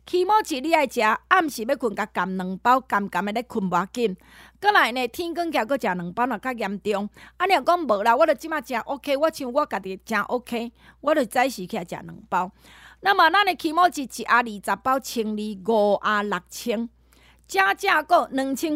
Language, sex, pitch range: Chinese, female, 215-310 Hz